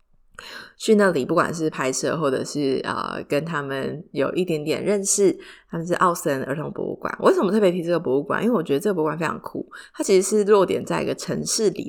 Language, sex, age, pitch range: Chinese, female, 20-39, 145-185 Hz